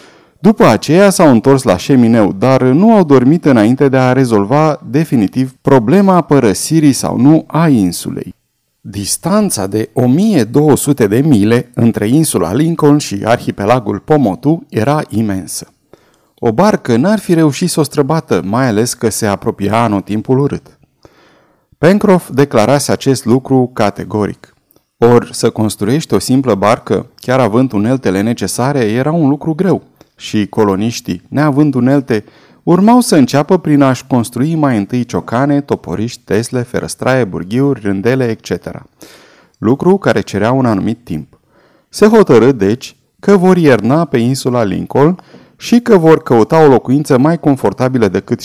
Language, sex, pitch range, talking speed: Romanian, male, 115-155 Hz, 135 wpm